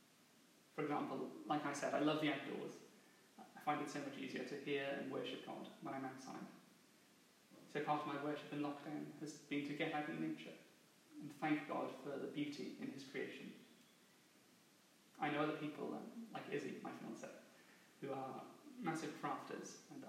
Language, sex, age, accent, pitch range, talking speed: English, male, 30-49, British, 145-155 Hz, 175 wpm